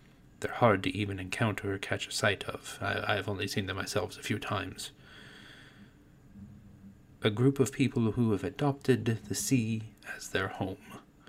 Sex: male